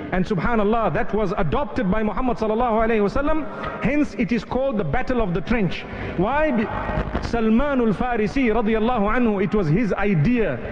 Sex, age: male, 40-59